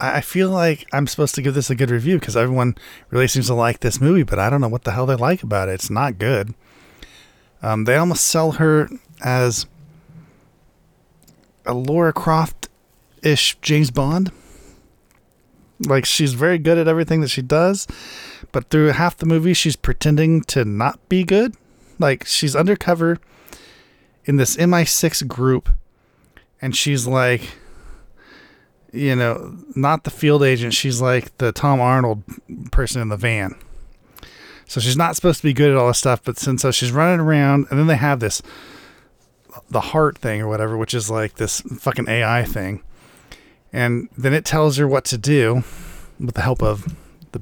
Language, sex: English, male